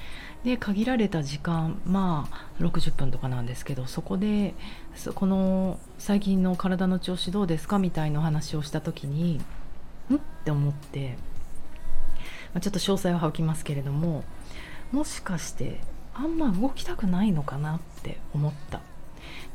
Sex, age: female, 40-59